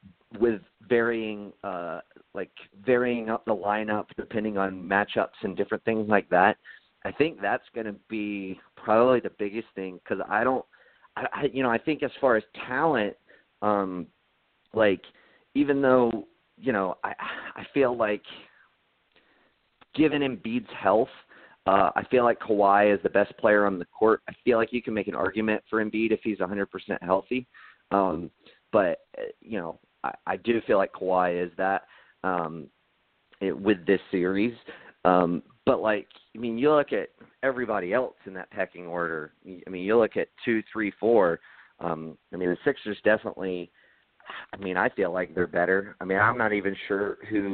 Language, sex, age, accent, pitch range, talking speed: English, male, 30-49, American, 90-115 Hz, 170 wpm